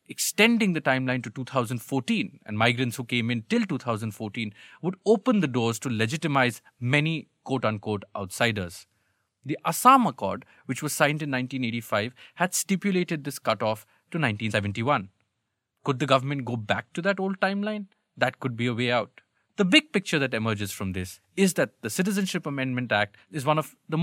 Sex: male